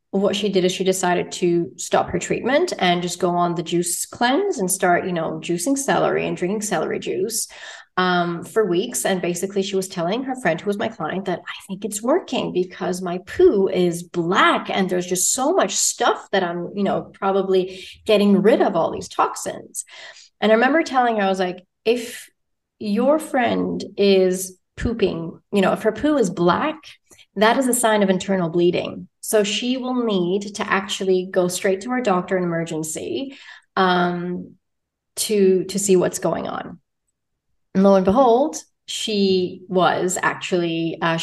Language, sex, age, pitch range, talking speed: English, female, 30-49, 175-215 Hz, 180 wpm